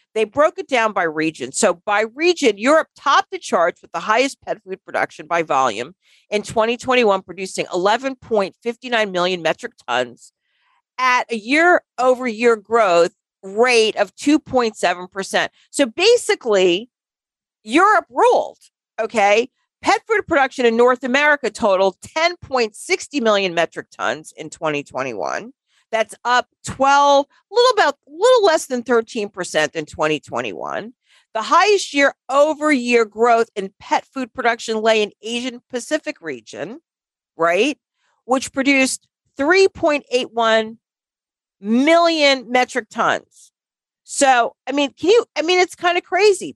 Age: 40-59